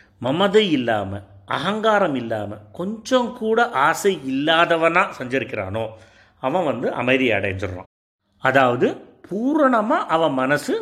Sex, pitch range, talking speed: male, 130-210 Hz, 95 wpm